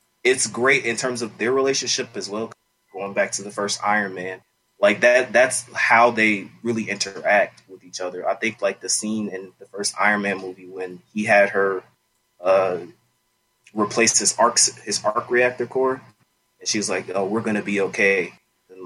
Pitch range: 100-120 Hz